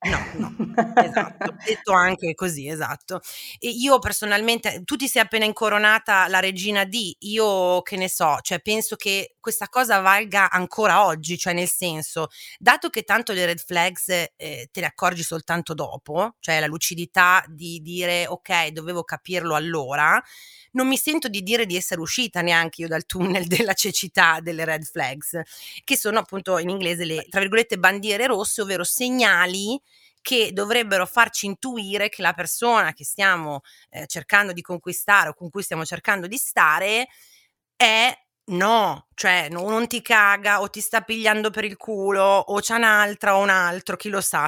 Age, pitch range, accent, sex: 30-49, 175-220 Hz, native, female